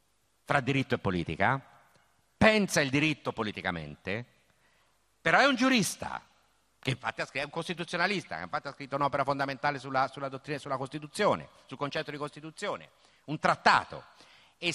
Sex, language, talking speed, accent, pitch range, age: male, Italian, 145 wpm, native, 120-190 Hz, 50-69